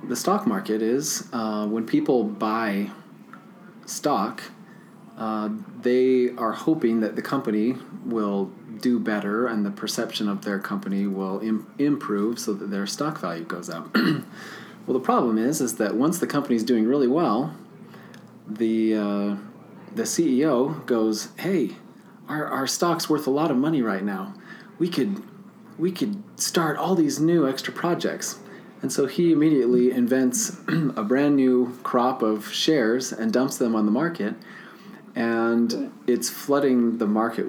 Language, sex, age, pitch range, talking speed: English, male, 30-49, 110-145 Hz, 155 wpm